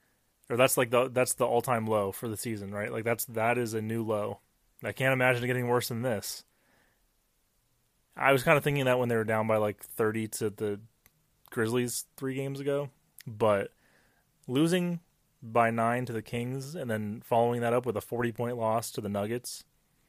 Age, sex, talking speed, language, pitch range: 20-39, male, 195 wpm, English, 110-135 Hz